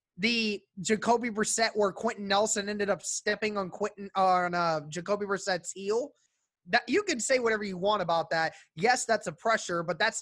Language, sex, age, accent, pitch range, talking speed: English, male, 20-39, American, 180-220 Hz, 190 wpm